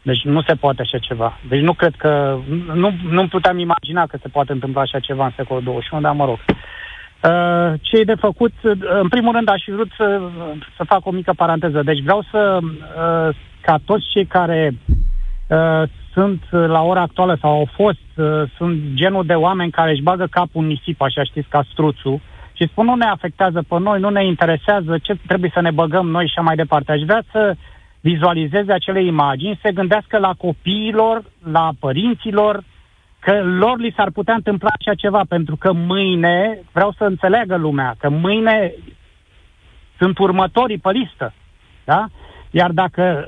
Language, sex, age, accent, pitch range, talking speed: Romanian, male, 30-49, native, 150-195 Hz, 170 wpm